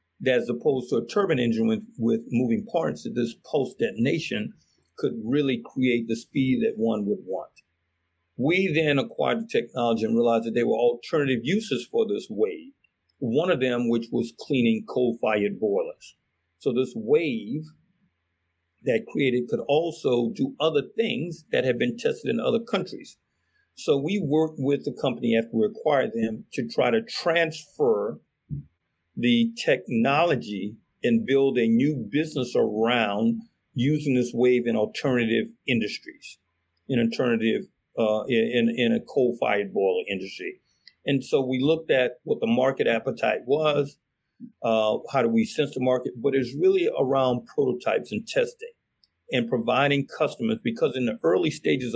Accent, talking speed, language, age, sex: American, 155 wpm, English, 50-69, male